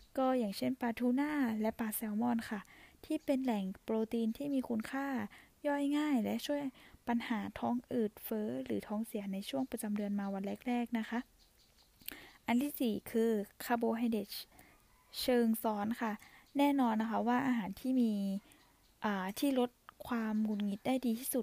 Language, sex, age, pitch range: Thai, female, 10-29, 210-255 Hz